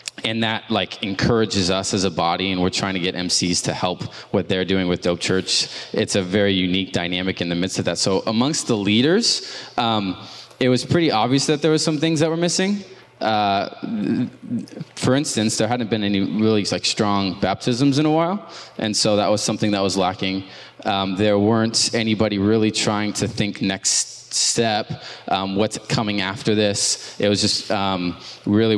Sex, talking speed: male, 190 wpm